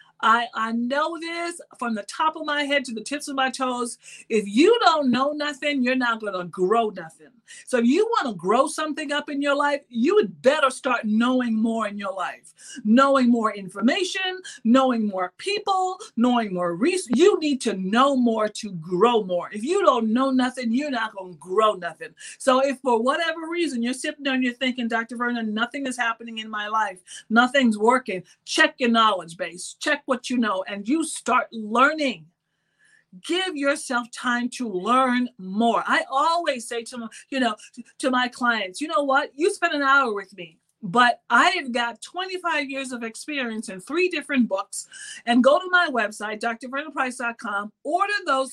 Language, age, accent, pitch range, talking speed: English, 50-69, American, 220-285 Hz, 185 wpm